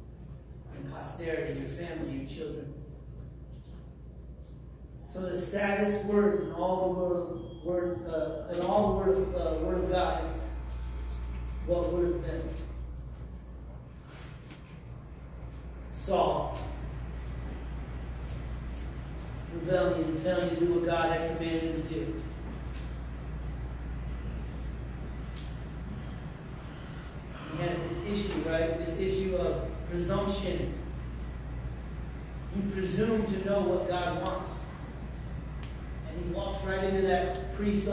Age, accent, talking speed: 30-49, American, 100 wpm